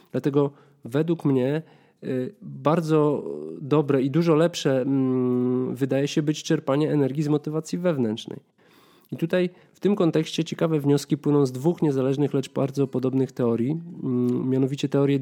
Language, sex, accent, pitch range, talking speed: Polish, male, native, 125-155 Hz, 130 wpm